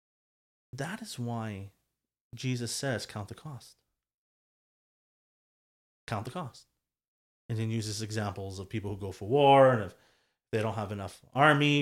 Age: 30-49